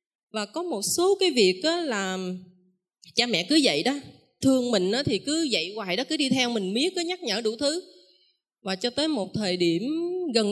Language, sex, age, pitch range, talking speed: Vietnamese, female, 20-39, 185-280 Hz, 210 wpm